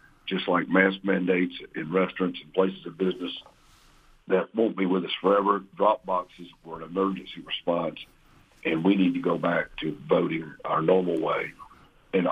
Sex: male